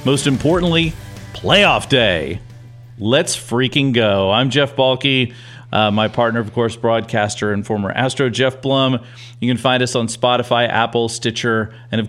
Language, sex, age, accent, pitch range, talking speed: English, male, 40-59, American, 115-135 Hz, 150 wpm